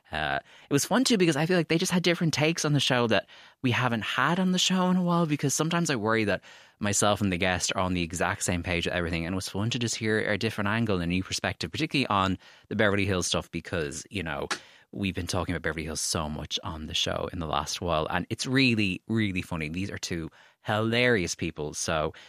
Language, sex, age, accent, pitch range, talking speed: English, male, 20-39, Irish, 90-120 Hz, 250 wpm